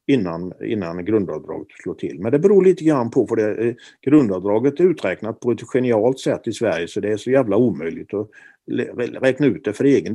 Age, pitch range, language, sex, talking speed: 50-69, 110-160 Hz, Swedish, male, 200 wpm